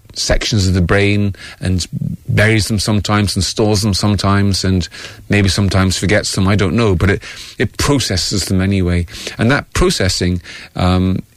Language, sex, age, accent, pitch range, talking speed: English, male, 30-49, British, 90-110 Hz, 160 wpm